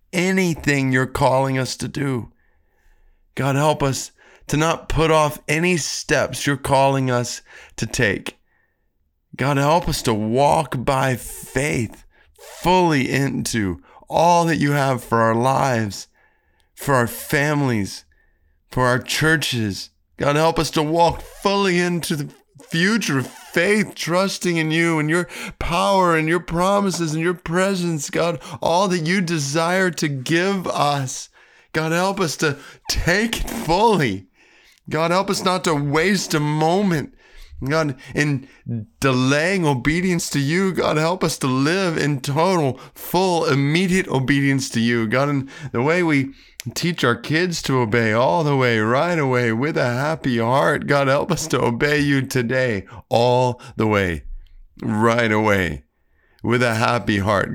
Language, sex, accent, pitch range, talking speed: English, male, American, 120-165 Hz, 145 wpm